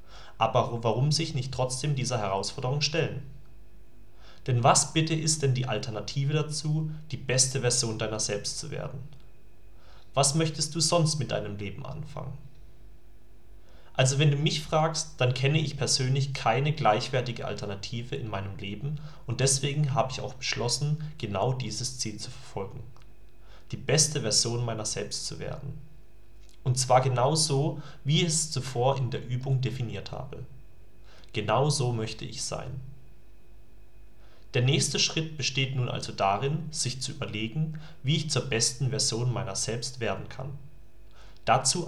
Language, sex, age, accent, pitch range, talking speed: German, male, 30-49, German, 110-145 Hz, 145 wpm